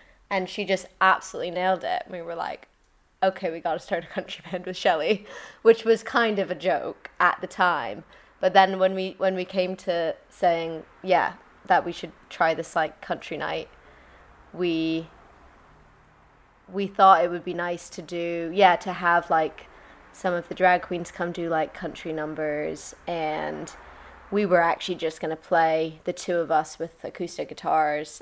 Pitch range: 165-190 Hz